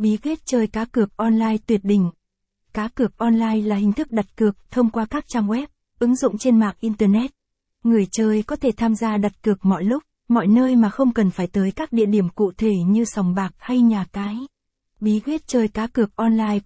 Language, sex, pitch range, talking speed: Vietnamese, female, 205-240 Hz, 215 wpm